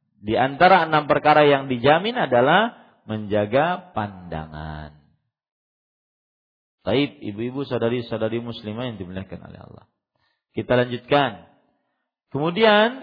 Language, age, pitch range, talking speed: Malay, 40-59, 115-185 Hz, 90 wpm